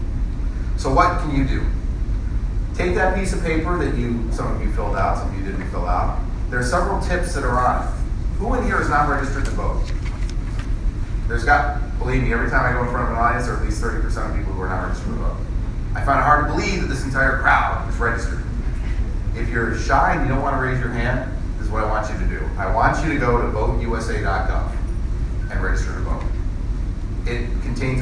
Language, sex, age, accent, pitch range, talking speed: English, male, 30-49, American, 95-120 Hz, 235 wpm